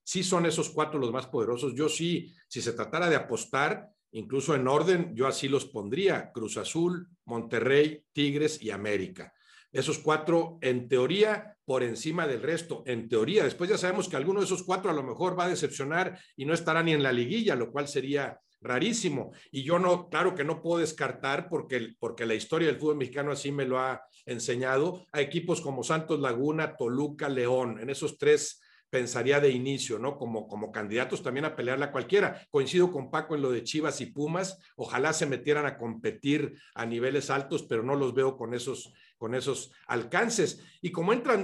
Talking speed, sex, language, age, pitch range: 190 wpm, male, Spanish, 50-69, 135-180 Hz